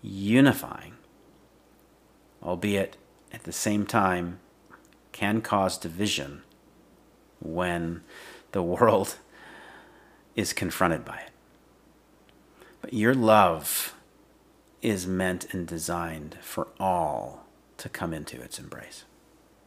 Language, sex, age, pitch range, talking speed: English, male, 40-59, 90-110 Hz, 90 wpm